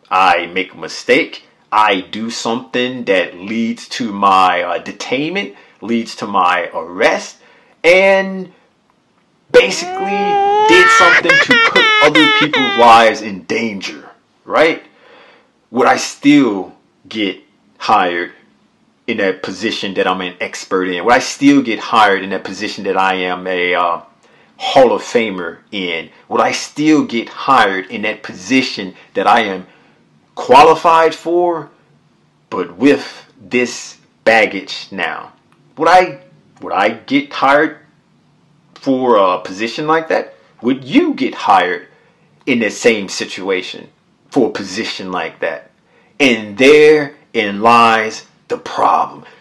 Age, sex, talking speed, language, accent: 30-49, male, 130 wpm, English, American